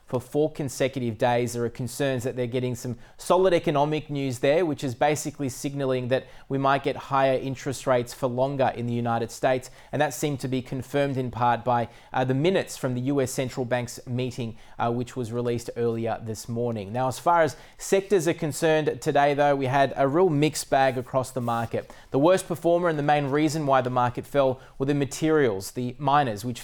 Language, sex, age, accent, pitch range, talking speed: English, male, 20-39, Australian, 125-145 Hz, 205 wpm